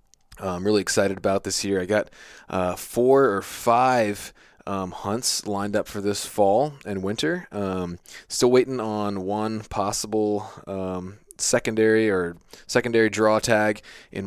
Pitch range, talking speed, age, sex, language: 95-110 Hz, 145 wpm, 20-39, male, English